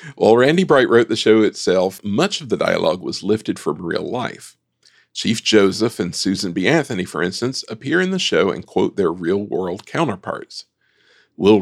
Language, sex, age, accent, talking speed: English, male, 50-69, American, 175 wpm